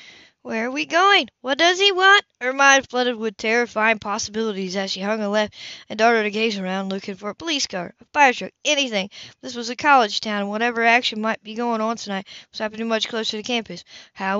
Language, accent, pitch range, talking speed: English, American, 205-250 Hz, 225 wpm